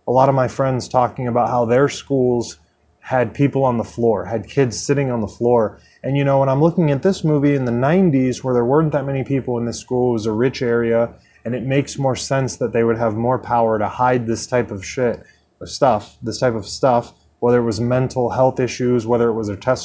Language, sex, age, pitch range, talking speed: English, male, 20-39, 115-135 Hz, 245 wpm